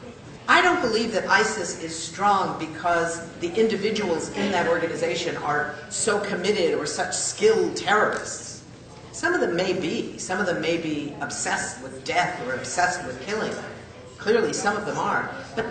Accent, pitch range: American, 180-245 Hz